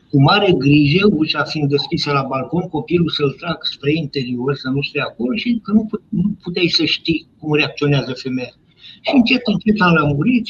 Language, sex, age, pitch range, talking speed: Romanian, male, 60-79, 145-210 Hz, 175 wpm